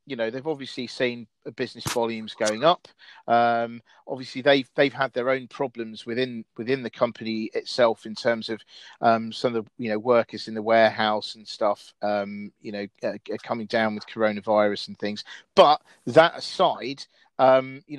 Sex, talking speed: male, 175 wpm